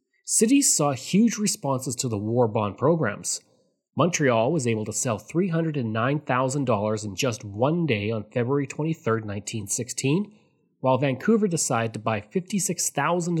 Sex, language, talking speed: male, English, 130 wpm